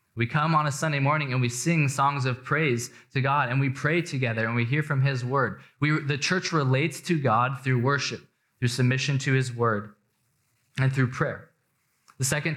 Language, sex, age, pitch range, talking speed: English, male, 20-39, 120-145 Hz, 200 wpm